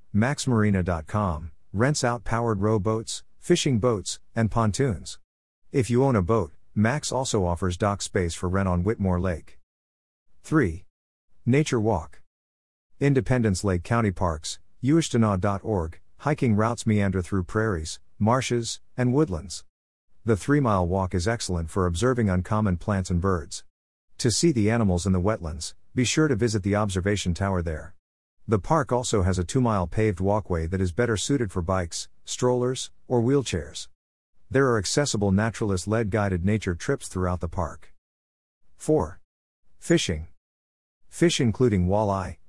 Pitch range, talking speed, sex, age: 90-115 Hz, 140 wpm, male, 50-69